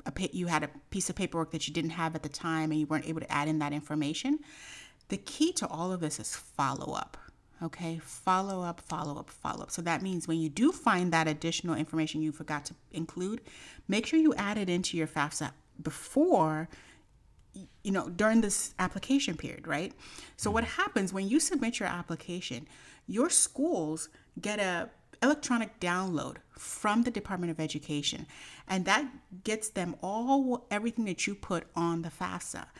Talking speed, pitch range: 180 wpm, 155-220 Hz